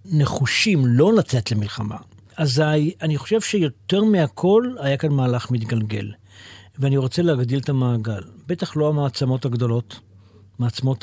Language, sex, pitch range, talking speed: Hebrew, male, 115-155 Hz, 125 wpm